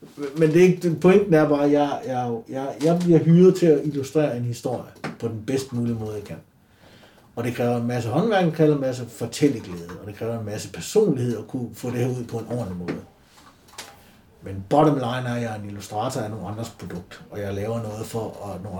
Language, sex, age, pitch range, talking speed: Danish, male, 60-79, 110-150 Hz, 235 wpm